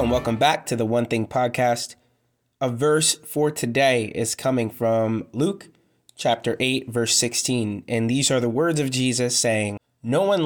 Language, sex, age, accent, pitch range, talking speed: English, male, 20-39, American, 120-150 Hz, 170 wpm